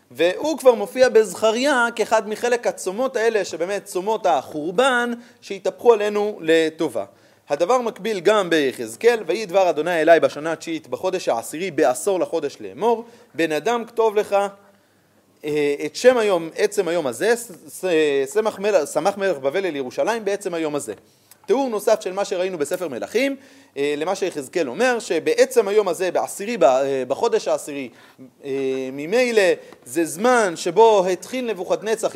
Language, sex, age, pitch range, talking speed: Hebrew, male, 30-49, 170-240 Hz, 130 wpm